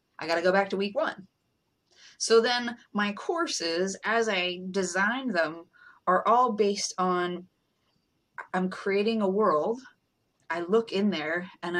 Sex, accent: female, American